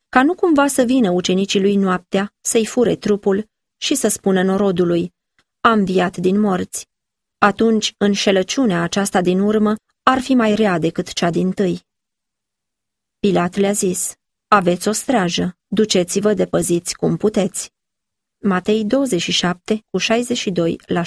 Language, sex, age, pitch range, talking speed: Romanian, female, 30-49, 185-230 Hz, 135 wpm